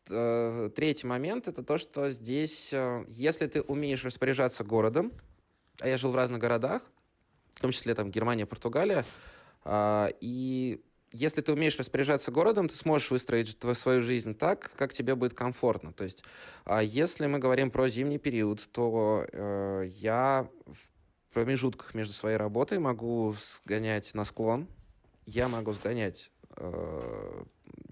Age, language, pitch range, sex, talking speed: 20-39, Russian, 105-130 Hz, male, 130 wpm